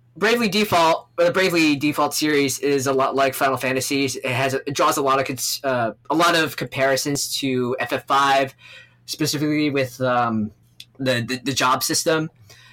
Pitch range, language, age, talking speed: 130-155 Hz, English, 20-39, 160 wpm